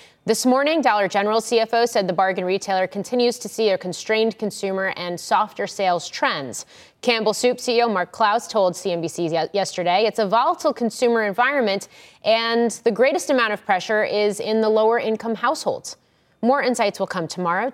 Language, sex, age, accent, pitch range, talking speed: English, female, 30-49, American, 185-250 Hz, 165 wpm